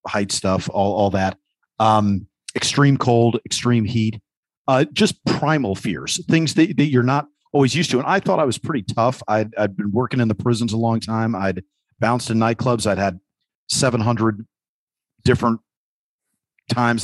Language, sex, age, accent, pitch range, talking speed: English, male, 40-59, American, 105-130 Hz, 170 wpm